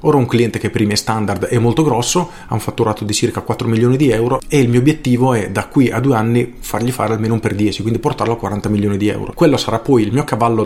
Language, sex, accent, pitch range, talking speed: Italian, male, native, 105-135 Hz, 270 wpm